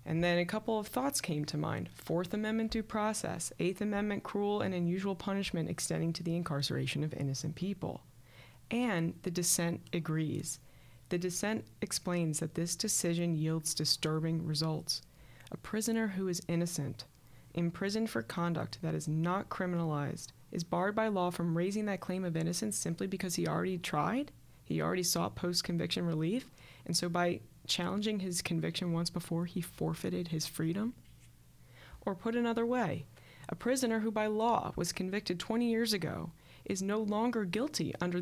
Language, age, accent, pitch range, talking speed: English, 20-39, American, 160-205 Hz, 160 wpm